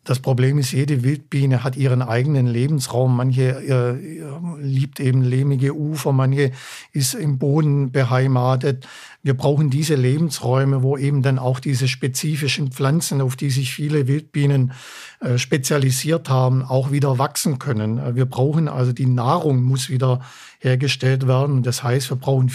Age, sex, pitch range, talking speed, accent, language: 50-69, male, 130-145 Hz, 150 wpm, German, German